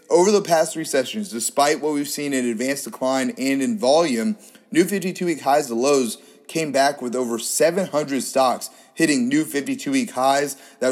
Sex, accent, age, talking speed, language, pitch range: male, American, 30-49, 180 wpm, English, 125-170 Hz